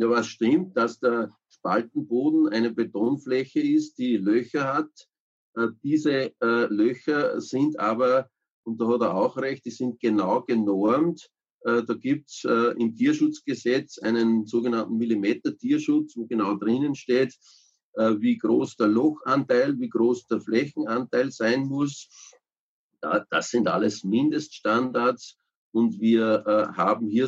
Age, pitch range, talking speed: 50-69, 115-150 Hz, 130 wpm